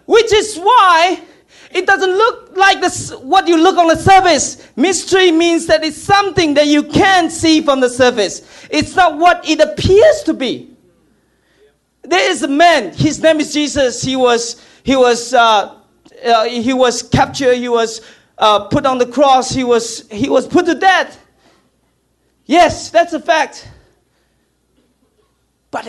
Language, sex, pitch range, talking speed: English, male, 260-345 Hz, 160 wpm